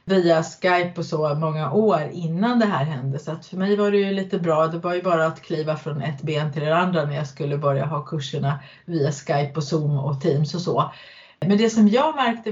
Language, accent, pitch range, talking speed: Swedish, native, 150-195 Hz, 240 wpm